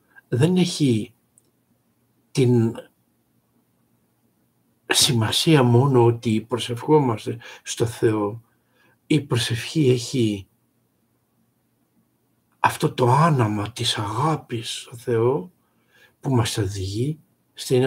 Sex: male